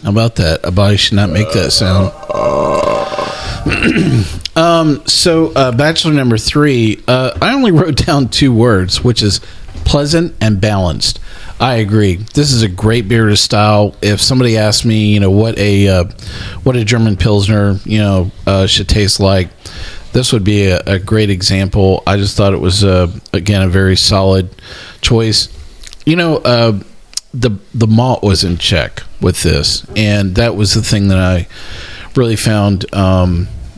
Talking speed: 170 wpm